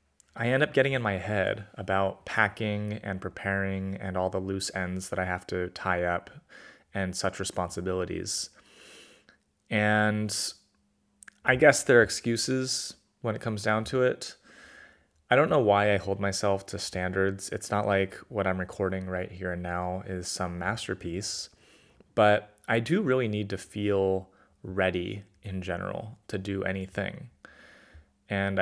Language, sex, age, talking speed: English, male, 20-39, 155 wpm